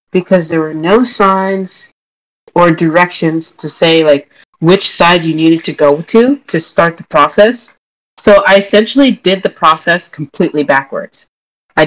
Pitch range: 165-225 Hz